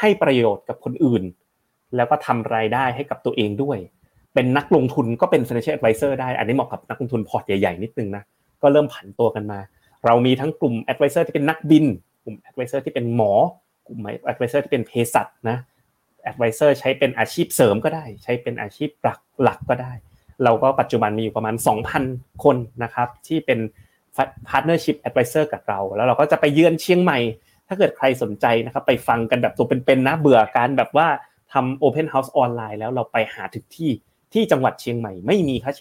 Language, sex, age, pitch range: Thai, male, 20-39, 115-150 Hz